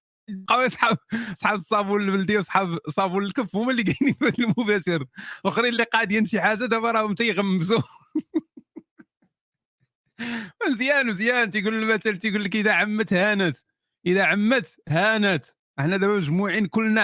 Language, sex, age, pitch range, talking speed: Arabic, male, 40-59, 180-225 Hz, 125 wpm